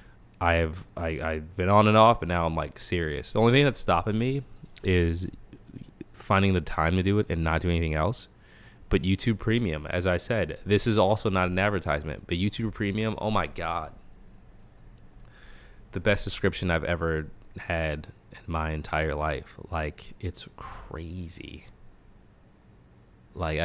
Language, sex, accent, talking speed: English, male, American, 160 wpm